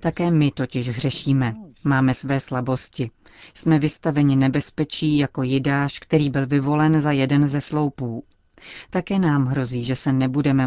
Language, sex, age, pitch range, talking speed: Czech, female, 40-59, 135-155 Hz, 140 wpm